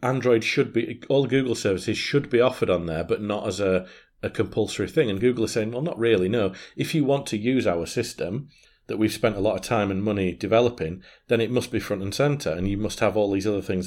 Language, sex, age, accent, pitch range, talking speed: English, male, 40-59, British, 95-125 Hz, 250 wpm